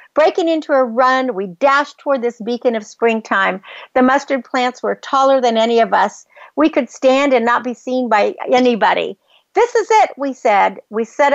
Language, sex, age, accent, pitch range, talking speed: English, female, 50-69, American, 215-265 Hz, 190 wpm